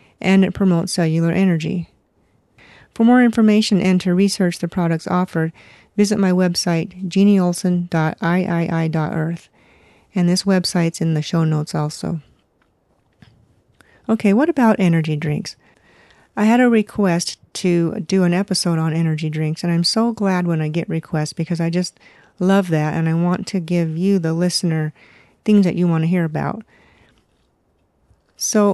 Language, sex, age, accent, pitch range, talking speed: English, female, 50-69, American, 160-195 Hz, 150 wpm